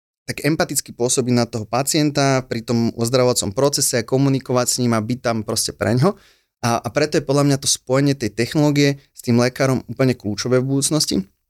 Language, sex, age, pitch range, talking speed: Slovak, male, 30-49, 110-135 Hz, 190 wpm